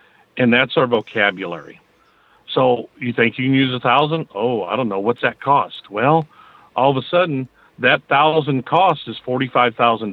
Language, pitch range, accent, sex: English, 110-145 Hz, American, male